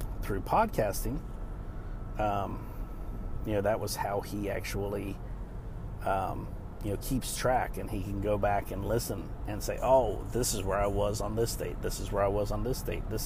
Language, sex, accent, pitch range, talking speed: English, male, American, 100-115 Hz, 190 wpm